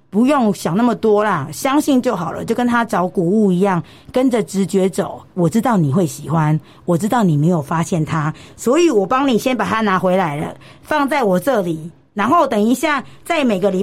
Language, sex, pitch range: Chinese, female, 180-230 Hz